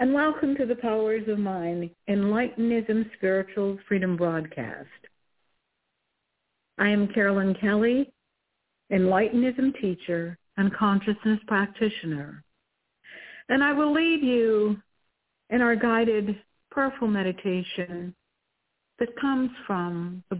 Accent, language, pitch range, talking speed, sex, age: American, English, 185-230 Hz, 100 wpm, female, 60-79